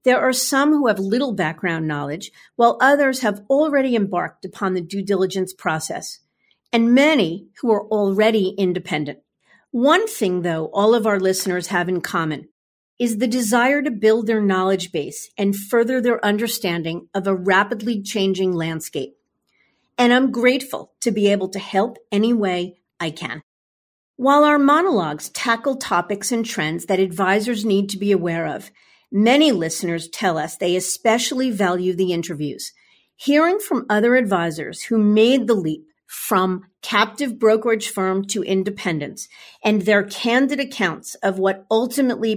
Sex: female